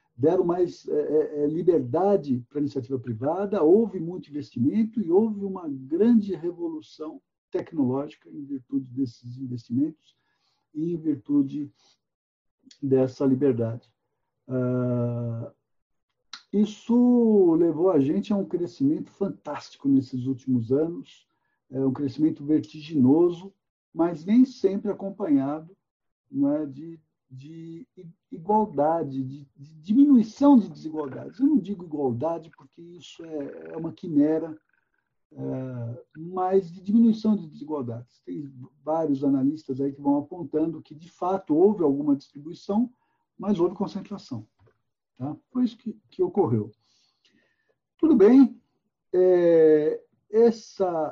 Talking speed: 105 wpm